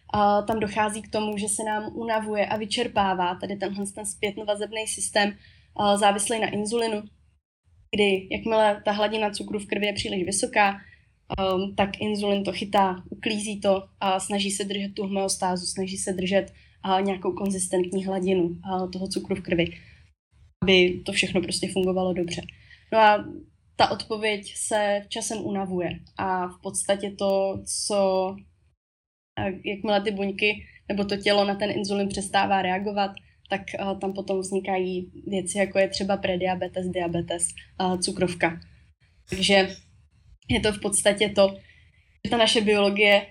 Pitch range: 185-210 Hz